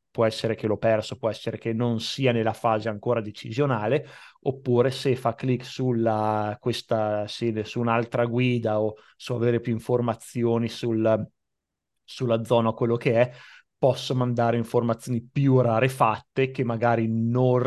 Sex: male